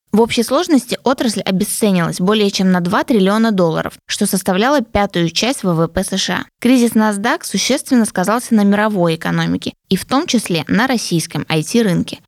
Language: Russian